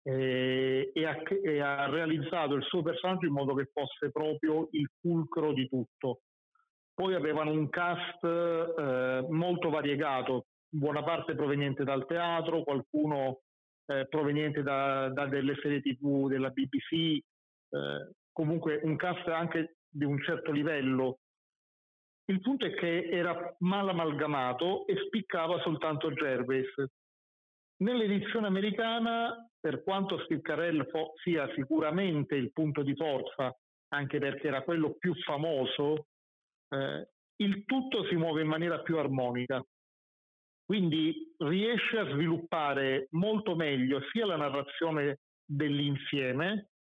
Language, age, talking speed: Italian, 40-59, 120 wpm